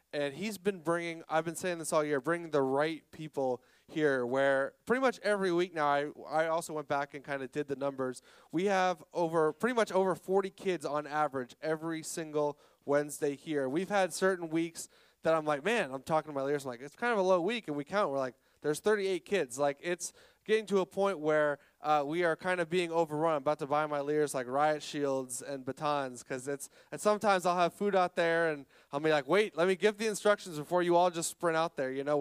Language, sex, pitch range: English, male, 145-180 Hz